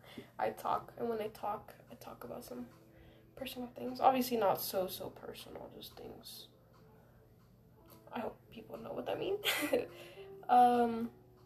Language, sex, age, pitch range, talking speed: English, female, 10-29, 150-225 Hz, 140 wpm